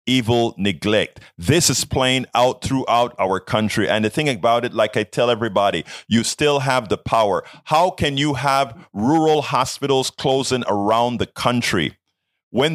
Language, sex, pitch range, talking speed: English, male, 95-130 Hz, 160 wpm